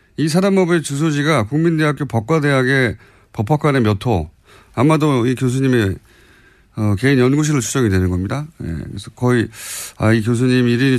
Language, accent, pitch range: Korean, native, 105-150 Hz